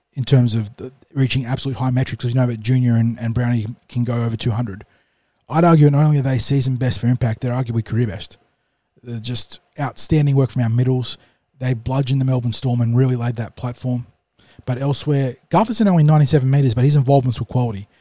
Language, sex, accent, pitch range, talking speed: English, male, Australian, 120-135 Hz, 205 wpm